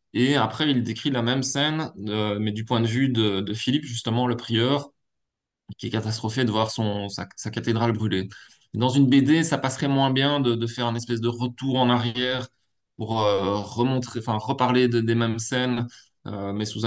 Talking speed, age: 200 wpm, 20-39